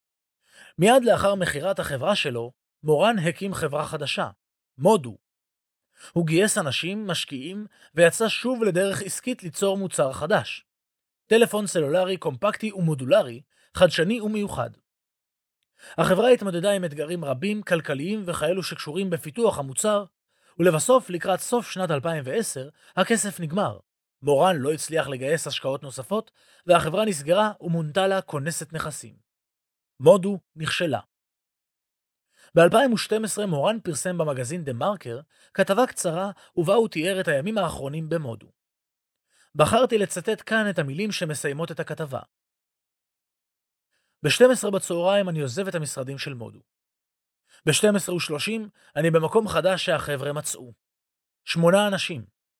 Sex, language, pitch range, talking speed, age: male, Hebrew, 145-200 Hz, 110 wpm, 30-49